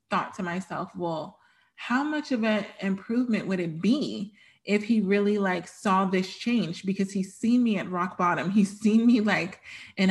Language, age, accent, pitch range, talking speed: English, 20-39, American, 185-220 Hz, 185 wpm